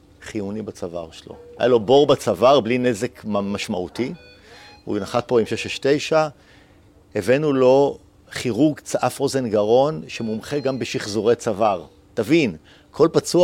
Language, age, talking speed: Hebrew, 50-69, 125 wpm